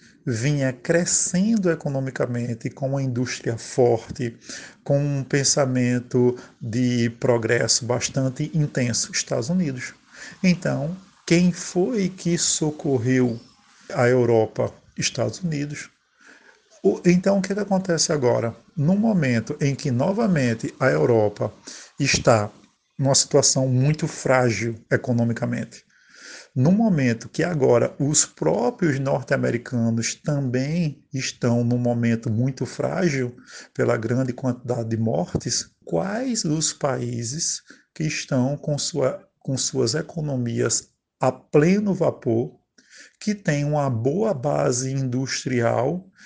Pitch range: 125-170 Hz